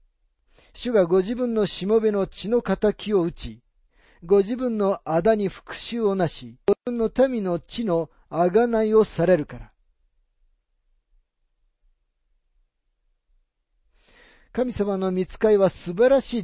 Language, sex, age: Japanese, male, 40-59